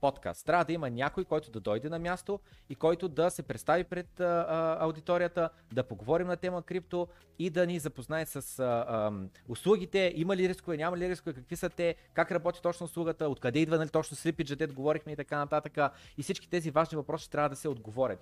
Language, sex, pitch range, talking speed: Bulgarian, male, 140-175 Hz, 210 wpm